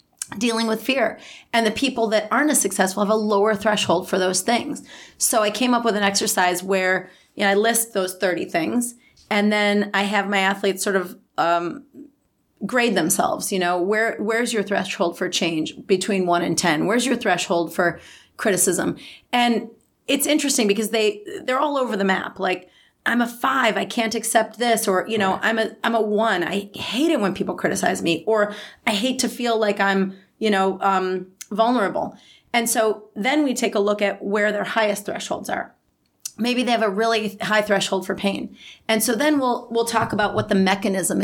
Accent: American